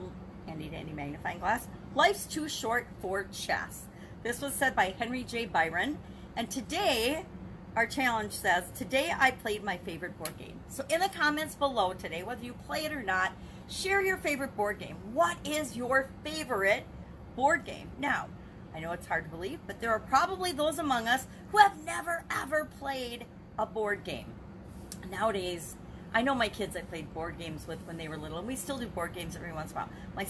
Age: 40-59